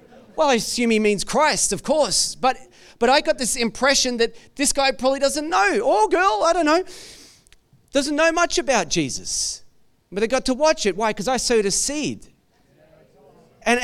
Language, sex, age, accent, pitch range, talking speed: English, male, 30-49, Australian, 200-265 Hz, 185 wpm